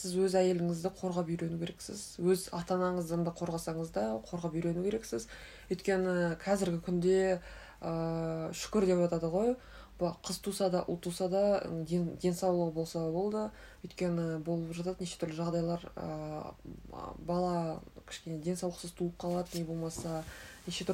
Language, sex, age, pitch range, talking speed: Russian, female, 20-39, 165-185 Hz, 80 wpm